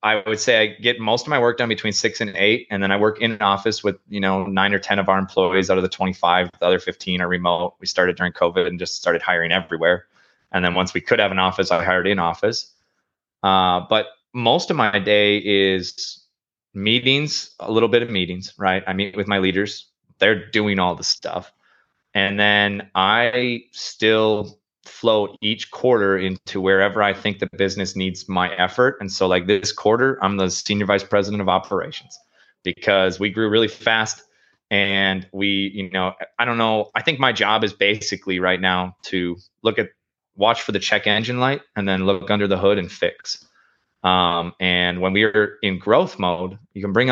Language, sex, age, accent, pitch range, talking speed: English, male, 20-39, American, 95-105 Hz, 205 wpm